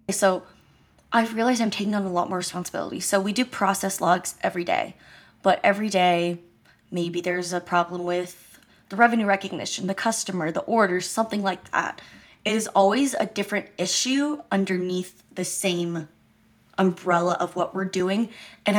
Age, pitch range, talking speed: 20-39, 180-205 Hz, 160 wpm